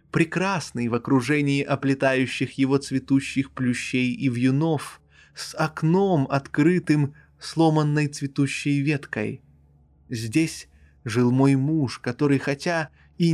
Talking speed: 100 wpm